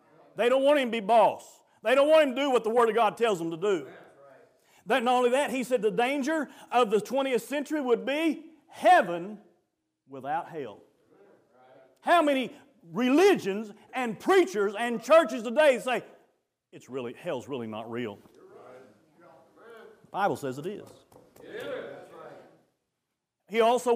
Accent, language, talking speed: American, English, 155 wpm